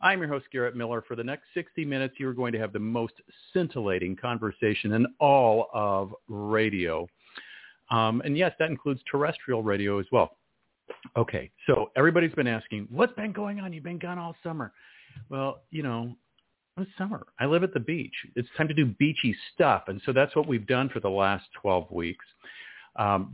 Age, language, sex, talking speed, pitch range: 50-69, English, male, 190 wpm, 105-135 Hz